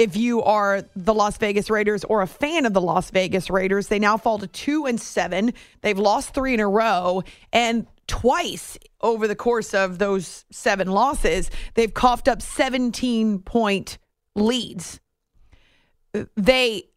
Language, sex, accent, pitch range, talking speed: English, female, American, 205-245 Hz, 150 wpm